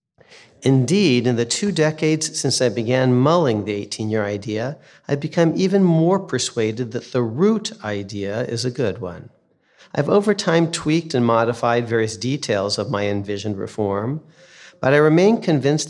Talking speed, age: 155 wpm, 40-59